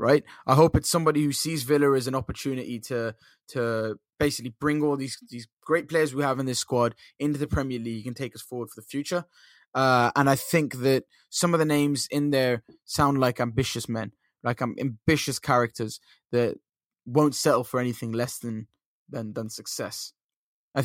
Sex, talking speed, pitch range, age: male, 185 wpm, 115-140 Hz, 10-29